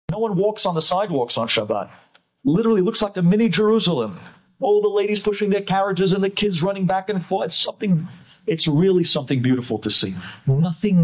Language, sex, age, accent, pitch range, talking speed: English, male, 50-69, American, 155-205 Hz, 195 wpm